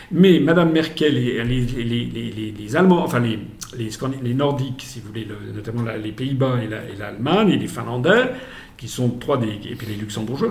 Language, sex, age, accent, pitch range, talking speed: French, male, 50-69, French, 120-175 Hz, 135 wpm